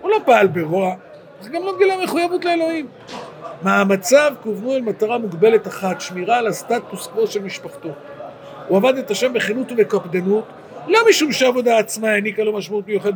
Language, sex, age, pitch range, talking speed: Hebrew, male, 50-69, 190-245 Hz, 170 wpm